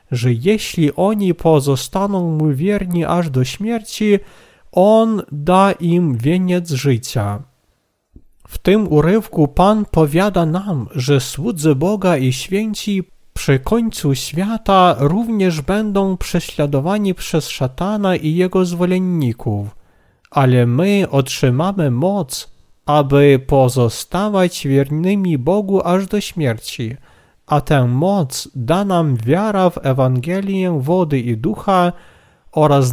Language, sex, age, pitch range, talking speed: Polish, male, 40-59, 130-185 Hz, 110 wpm